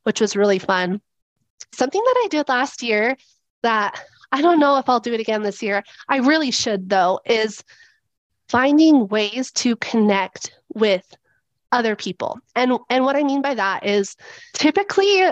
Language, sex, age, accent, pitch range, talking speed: English, female, 30-49, American, 215-260 Hz, 165 wpm